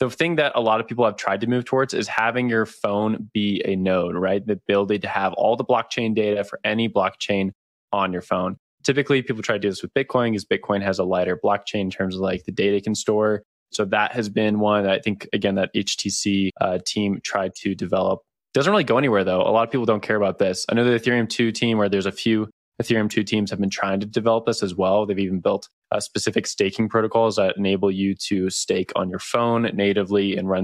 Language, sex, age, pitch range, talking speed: English, male, 20-39, 100-115 Hz, 245 wpm